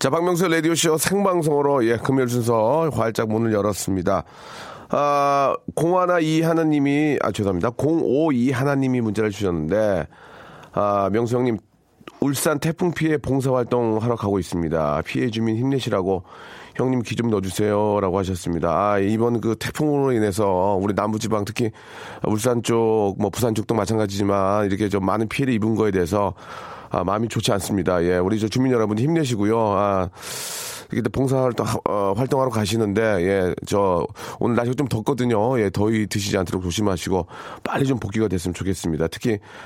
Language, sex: Korean, male